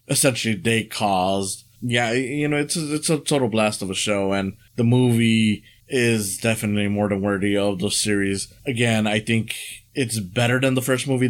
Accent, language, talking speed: American, English, 185 wpm